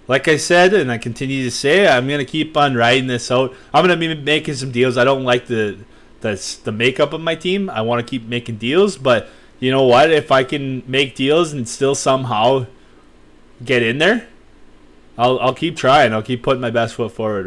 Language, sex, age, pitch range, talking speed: English, male, 20-39, 120-145 Hz, 225 wpm